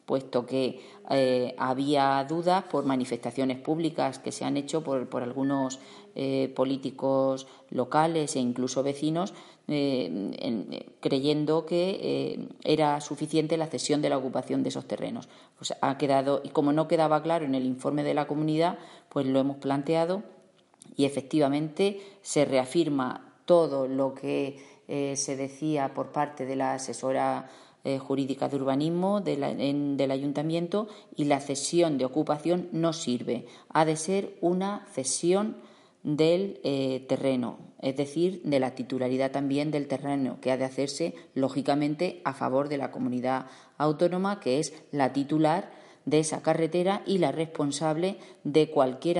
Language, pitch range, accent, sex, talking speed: Spanish, 135-160 Hz, Spanish, female, 145 wpm